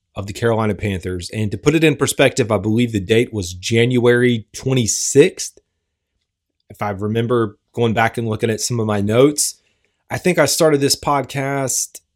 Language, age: English, 30-49